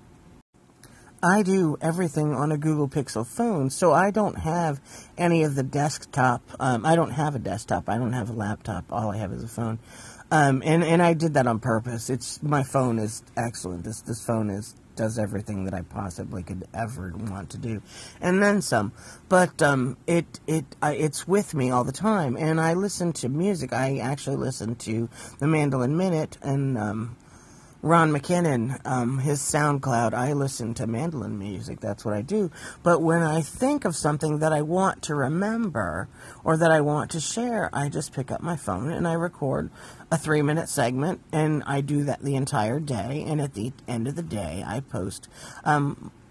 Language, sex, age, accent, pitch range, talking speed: English, male, 40-59, American, 120-165 Hz, 190 wpm